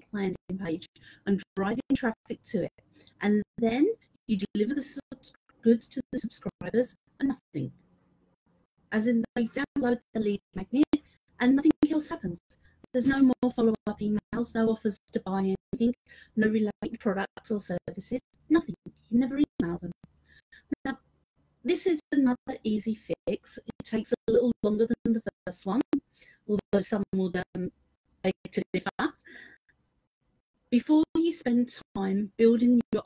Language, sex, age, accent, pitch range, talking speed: English, female, 30-49, British, 195-255 Hz, 140 wpm